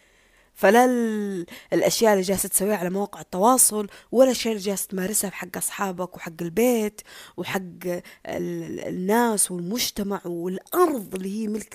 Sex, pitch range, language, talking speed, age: female, 180-230 Hz, Arabic, 115 wpm, 20-39